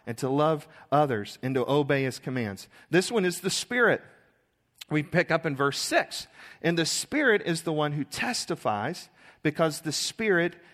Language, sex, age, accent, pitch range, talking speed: English, male, 40-59, American, 130-180 Hz, 175 wpm